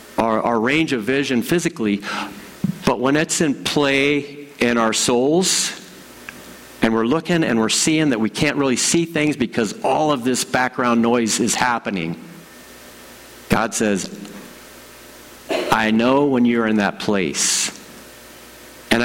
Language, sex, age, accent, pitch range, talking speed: English, male, 50-69, American, 95-130 Hz, 140 wpm